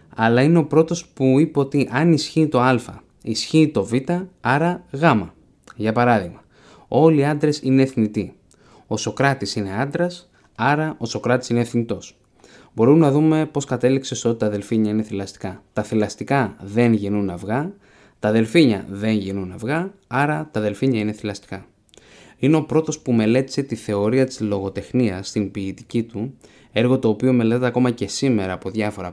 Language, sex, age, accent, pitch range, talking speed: Greek, male, 20-39, native, 100-135 Hz, 160 wpm